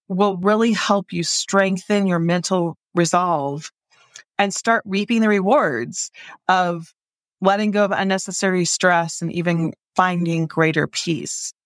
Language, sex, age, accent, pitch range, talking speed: English, female, 30-49, American, 170-210 Hz, 125 wpm